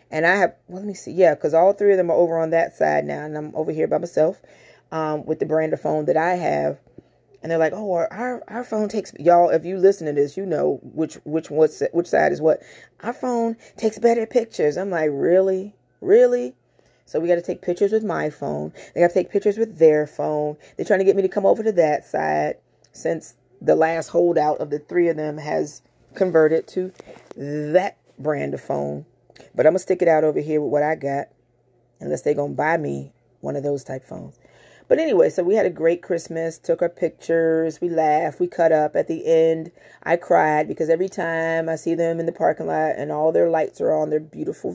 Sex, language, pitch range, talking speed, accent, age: female, English, 150-190 Hz, 230 wpm, American, 30-49